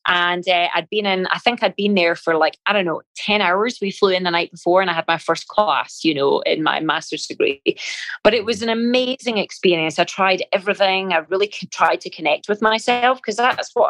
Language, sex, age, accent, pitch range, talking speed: English, female, 30-49, British, 165-210 Hz, 235 wpm